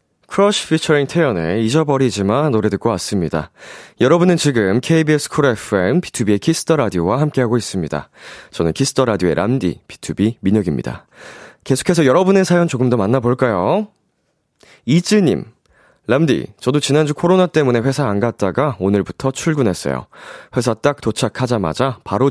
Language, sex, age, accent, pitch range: Korean, male, 30-49, native, 95-145 Hz